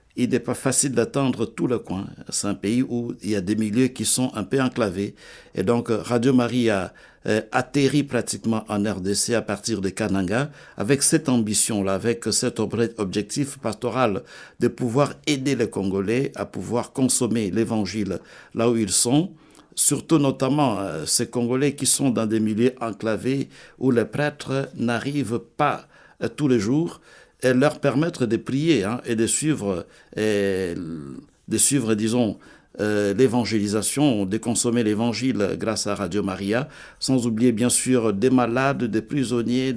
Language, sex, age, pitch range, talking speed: French, male, 60-79, 105-130 Hz, 155 wpm